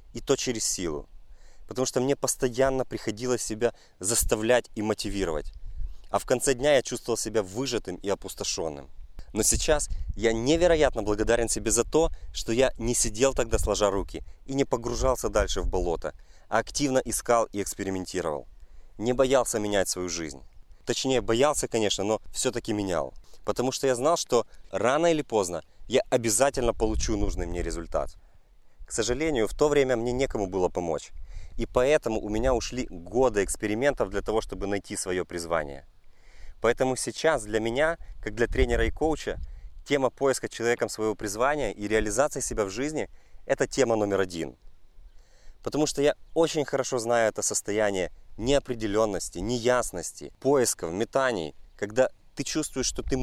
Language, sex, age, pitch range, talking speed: Russian, male, 30-49, 95-130 Hz, 155 wpm